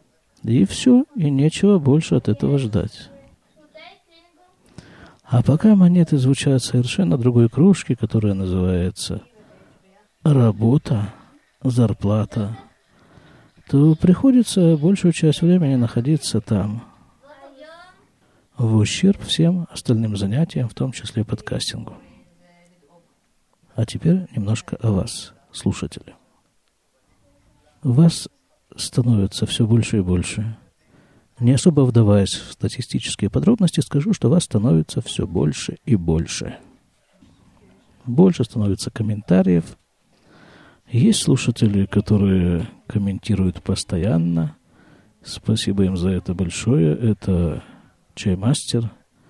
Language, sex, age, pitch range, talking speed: Russian, male, 50-69, 100-150 Hz, 95 wpm